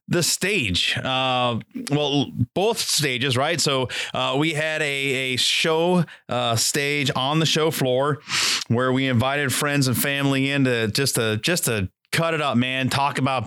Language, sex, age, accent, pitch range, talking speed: English, male, 30-49, American, 115-145 Hz, 170 wpm